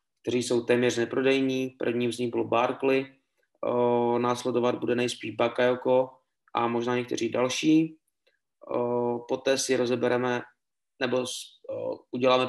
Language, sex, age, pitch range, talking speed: Czech, male, 20-39, 120-135 Hz, 120 wpm